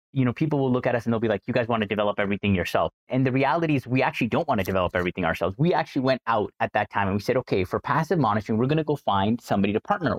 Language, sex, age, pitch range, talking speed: English, male, 30-49, 110-145 Hz, 305 wpm